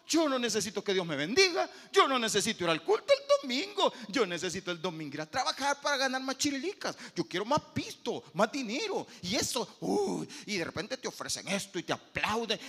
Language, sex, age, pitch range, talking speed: Spanish, male, 40-59, 185-275 Hz, 215 wpm